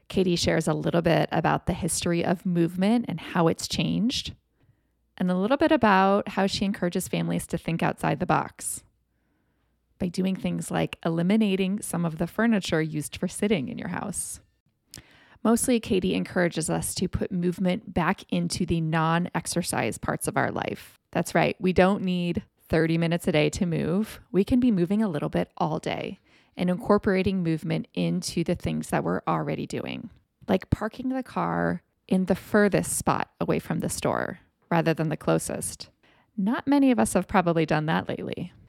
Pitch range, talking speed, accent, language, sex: 165-200 Hz, 175 wpm, American, English, female